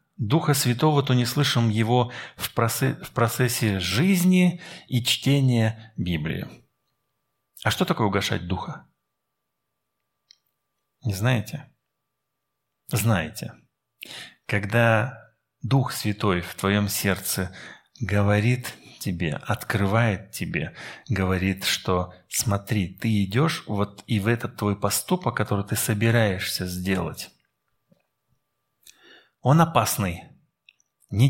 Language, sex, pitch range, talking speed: Russian, male, 105-140 Hz, 95 wpm